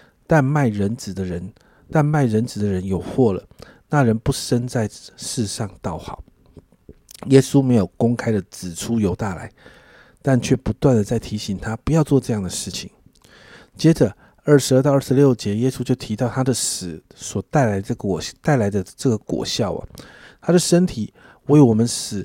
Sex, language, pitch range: male, Chinese, 105-135 Hz